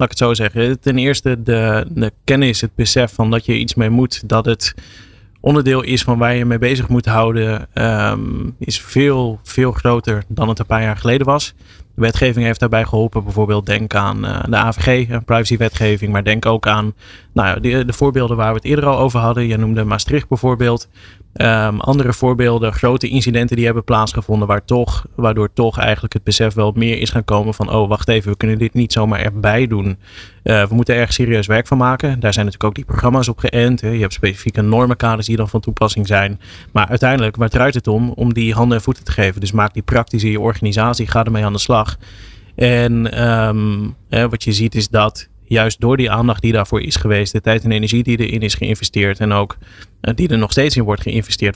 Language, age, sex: Dutch, 20-39, male